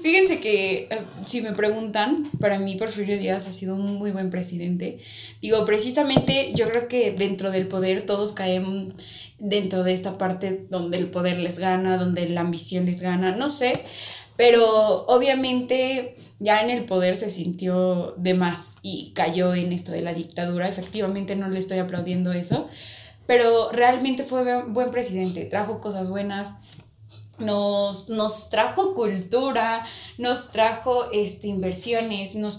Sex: female